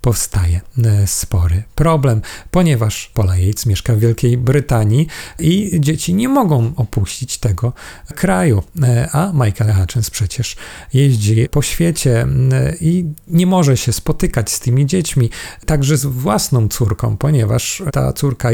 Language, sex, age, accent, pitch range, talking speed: Polish, male, 40-59, native, 110-140 Hz, 125 wpm